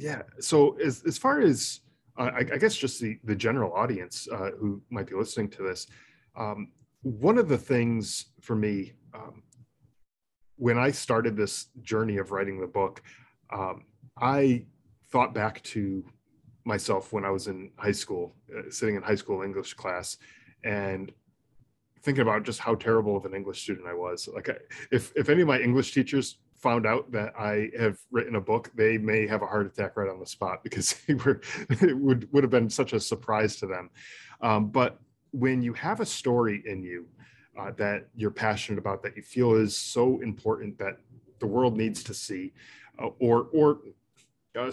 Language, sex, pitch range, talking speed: English, male, 105-130 Hz, 185 wpm